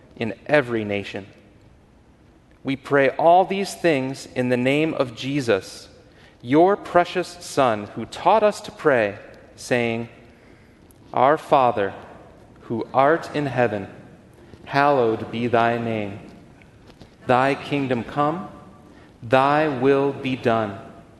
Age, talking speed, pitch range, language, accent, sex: 40-59, 110 wpm, 110-150 Hz, English, American, male